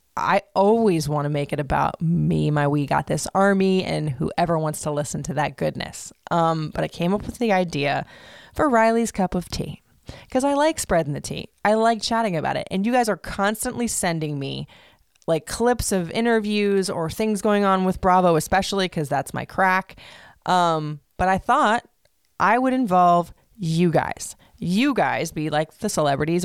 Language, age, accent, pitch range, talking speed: English, 20-39, American, 160-200 Hz, 185 wpm